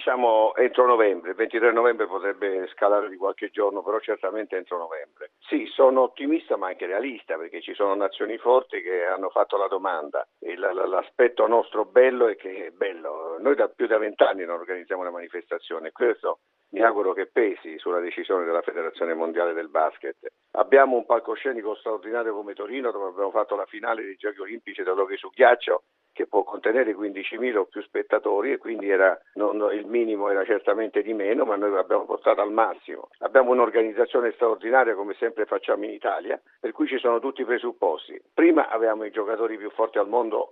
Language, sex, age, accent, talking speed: Italian, male, 50-69, native, 190 wpm